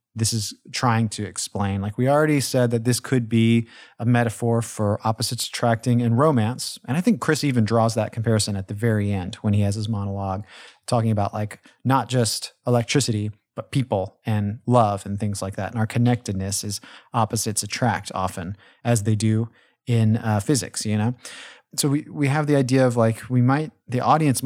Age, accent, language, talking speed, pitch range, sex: 30-49, American, English, 190 wpm, 105-130 Hz, male